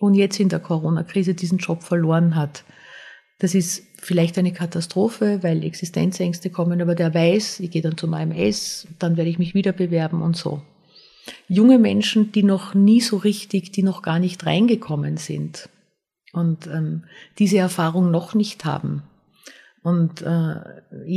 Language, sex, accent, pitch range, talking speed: German, female, Austrian, 165-200 Hz, 155 wpm